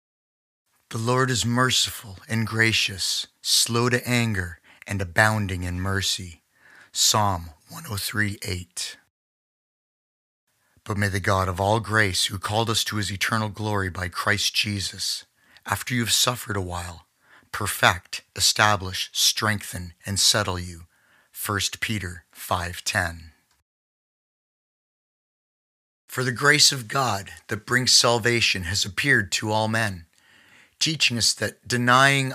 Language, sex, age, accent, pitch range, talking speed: English, male, 30-49, American, 95-115 Hz, 120 wpm